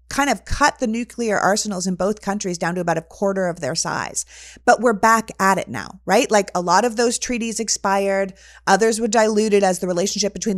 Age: 30-49